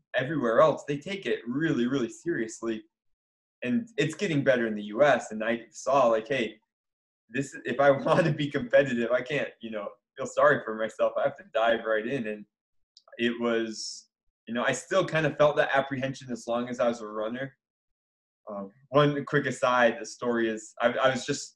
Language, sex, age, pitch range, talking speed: English, male, 20-39, 115-140 Hz, 195 wpm